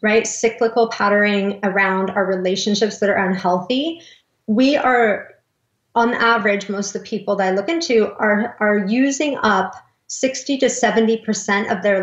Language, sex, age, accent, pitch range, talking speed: English, female, 30-49, American, 195-230 Hz, 150 wpm